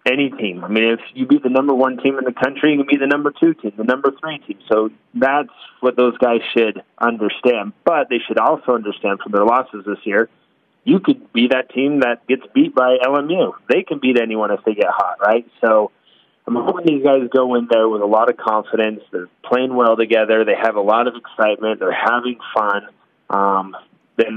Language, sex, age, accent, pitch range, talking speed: English, male, 30-49, American, 110-130 Hz, 220 wpm